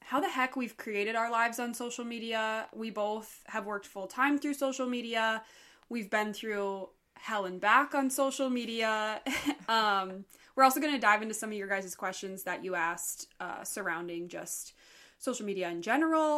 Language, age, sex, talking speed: English, 20-39, female, 180 wpm